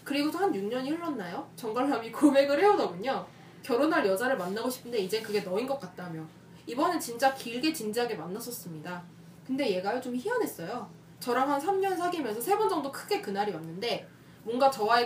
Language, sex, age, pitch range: Korean, female, 20-39, 195-285 Hz